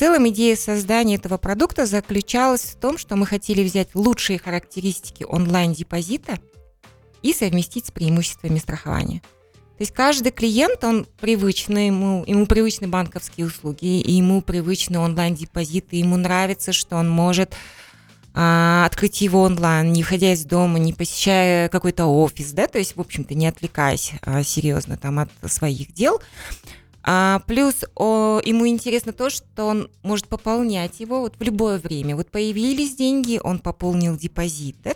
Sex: female